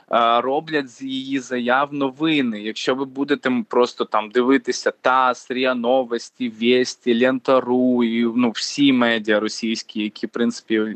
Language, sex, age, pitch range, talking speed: Ukrainian, male, 20-39, 120-150 Hz, 130 wpm